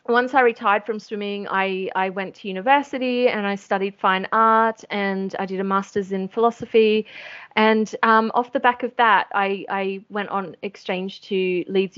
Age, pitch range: 30-49, 190-235 Hz